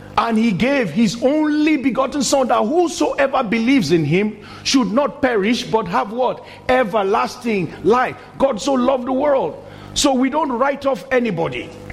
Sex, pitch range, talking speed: male, 180-250 Hz, 155 wpm